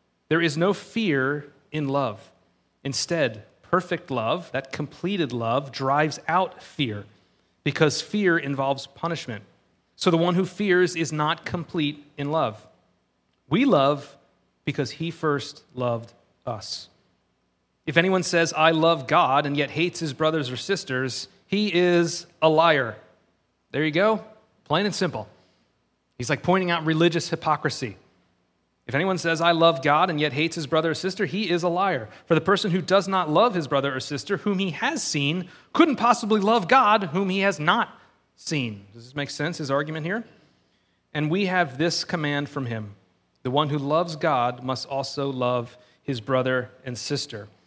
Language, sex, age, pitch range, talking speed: English, male, 30-49, 130-170 Hz, 165 wpm